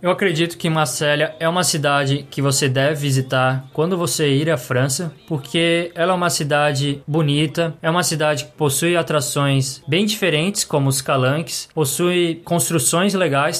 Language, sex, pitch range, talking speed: Portuguese, male, 140-170 Hz, 160 wpm